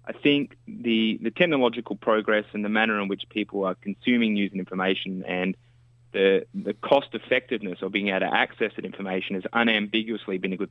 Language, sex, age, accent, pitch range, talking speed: English, male, 20-39, Australian, 95-120 Hz, 190 wpm